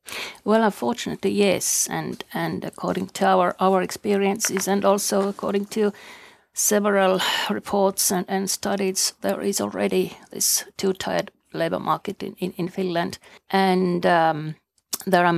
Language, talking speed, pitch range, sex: Finnish, 135 wpm, 170-195 Hz, female